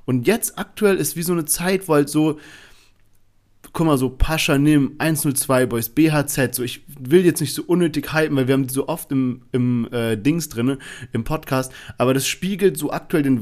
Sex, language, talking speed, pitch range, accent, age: male, German, 205 wpm, 135-175 Hz, German, 40-59